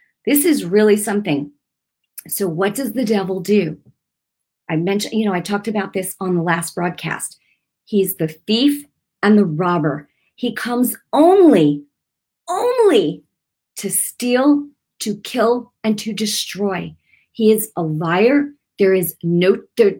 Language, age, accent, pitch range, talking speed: English, 40-59, American, 175-275 Hz, 140 wpm